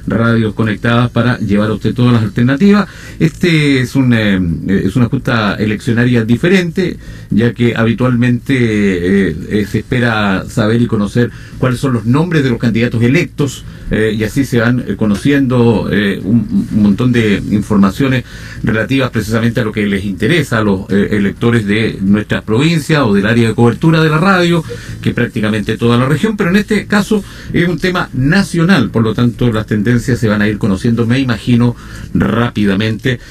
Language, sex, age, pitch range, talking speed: Spanish, male, 50-69, 110-135 Hz, 175 wpm